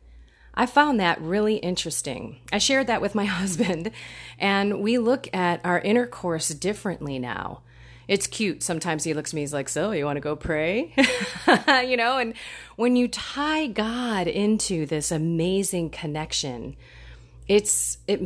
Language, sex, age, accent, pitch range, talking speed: English, female, 30-49, American, 155-210 Hz, 155 wpm